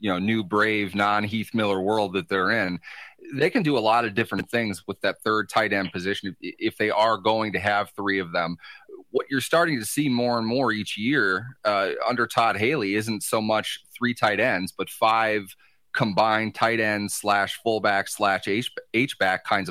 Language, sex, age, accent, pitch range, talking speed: English, male, 30-49, American, 100-115 Hz, 200 wpm